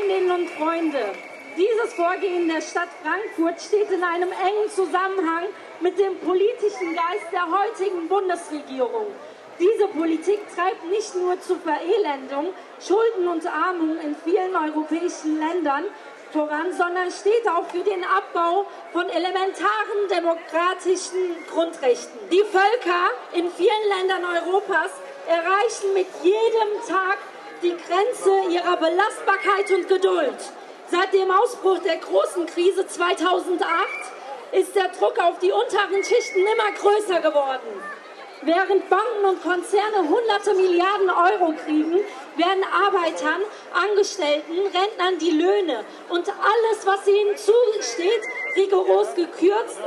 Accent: German